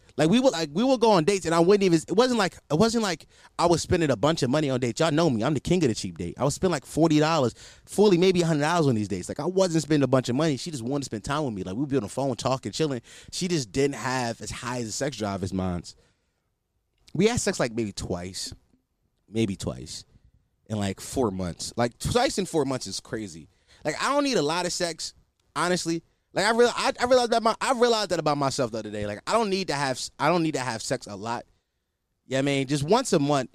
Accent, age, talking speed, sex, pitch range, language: American, 20-39, 275 wpm, male, 115-190 Hz, English